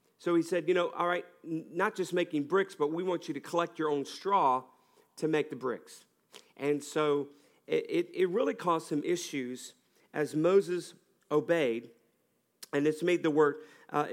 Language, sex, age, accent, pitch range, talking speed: English, male, 50-69, American, 130-175 Hz, 180 wpm